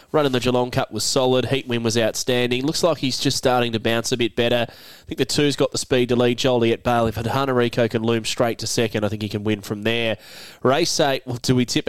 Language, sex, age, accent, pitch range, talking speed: English, male, 20-39, Australian, 115-130 Hz, 260 wpm